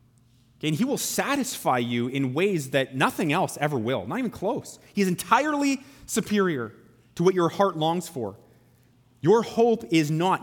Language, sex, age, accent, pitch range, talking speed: English, male, 30-49, American, 135-210 Hz, 165 wpm